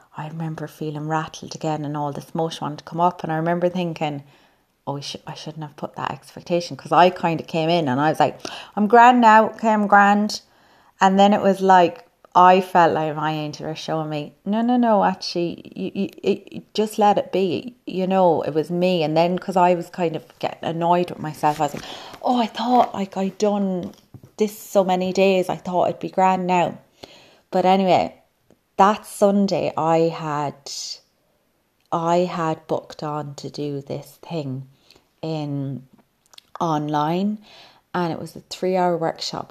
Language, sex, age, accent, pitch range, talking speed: English, female, 30-49, British, 155-190 Hz, 190 wpm